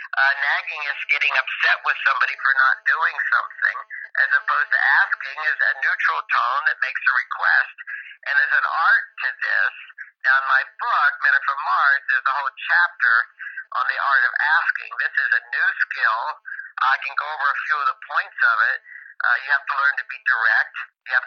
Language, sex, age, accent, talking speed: English, male, 50-69, American, 200 wpm